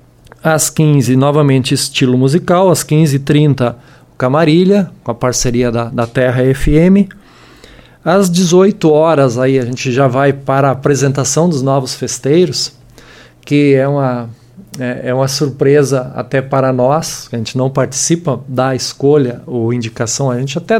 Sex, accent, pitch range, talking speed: male, Brazilian, 130-160 Hz, 140 wpm